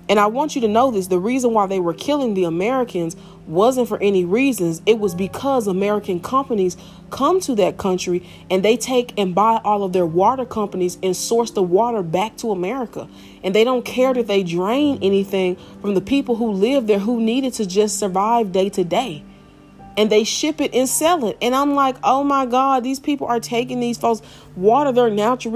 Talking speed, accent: 210 wpm, American